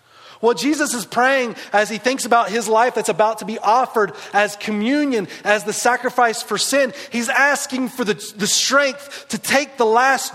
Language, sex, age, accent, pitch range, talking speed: English, male, 30-49, American, 185-230 Hz, 185 wpm